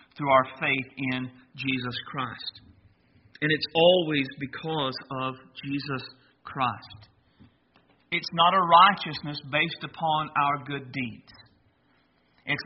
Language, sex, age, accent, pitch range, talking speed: English, male, 50-69, American, 130-170 Hz, 110 wpm